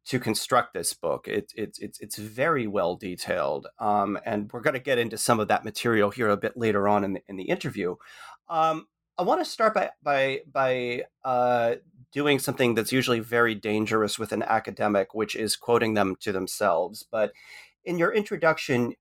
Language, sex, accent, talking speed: English, male, American, 190 wpm